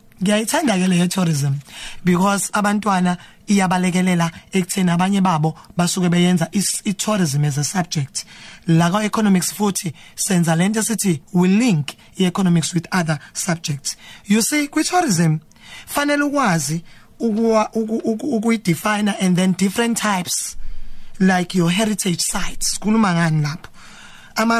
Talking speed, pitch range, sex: 110 wpm, 170-220 Hz, male